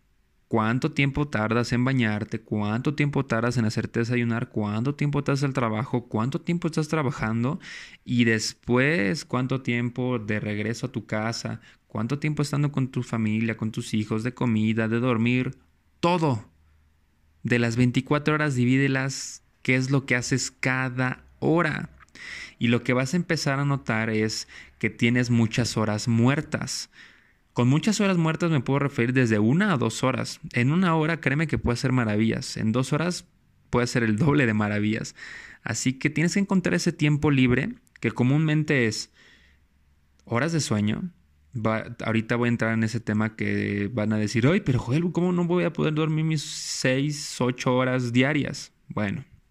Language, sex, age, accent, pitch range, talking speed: Spanish, male, 20-39, Mexican, 110-145 Hz, 170 wpm